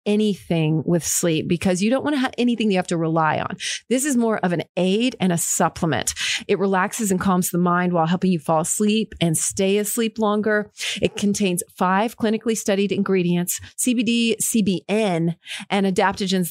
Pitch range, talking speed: 175-225 Hz, 180 wpm